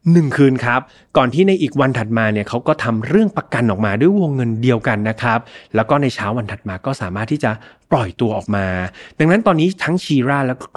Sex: male